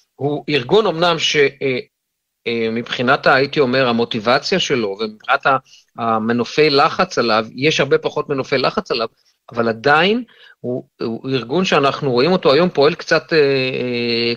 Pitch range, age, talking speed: 135-170 Hz, 40-59, 140 wpm